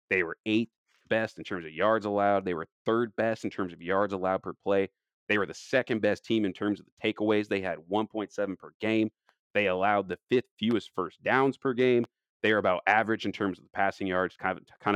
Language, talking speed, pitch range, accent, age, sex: English, 225 wpm, 100-120 Hz, American, 30-49, male